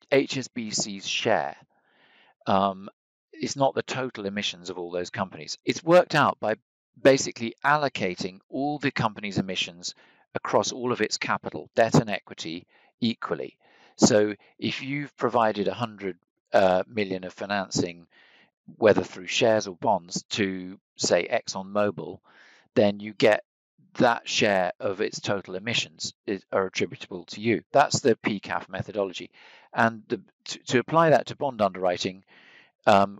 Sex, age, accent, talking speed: male, 40-59, British, 140 wpm